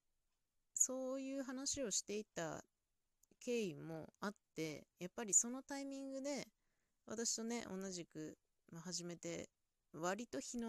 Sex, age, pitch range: female, 20-39, 150-200 Hz